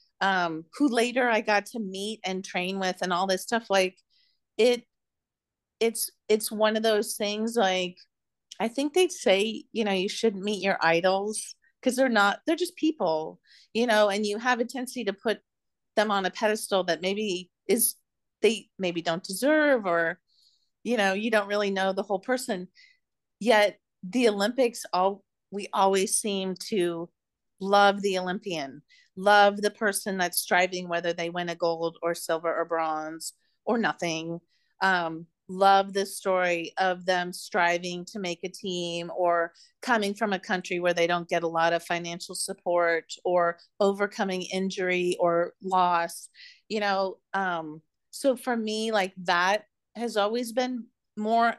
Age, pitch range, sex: 40-59, 180-220 Hz, female